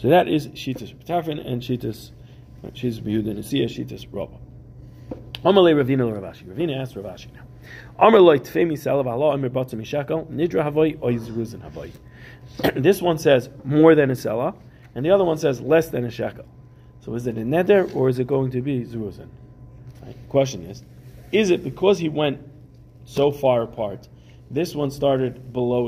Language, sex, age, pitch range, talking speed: English, male, 40-59, 120-145 Hz, 165 wpm